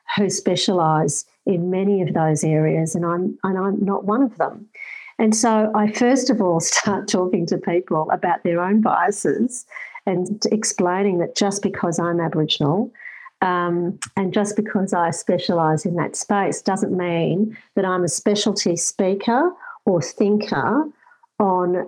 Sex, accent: female, Australian